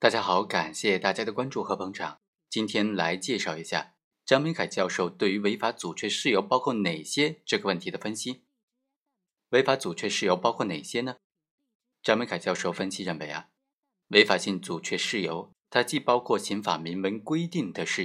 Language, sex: Chinese, male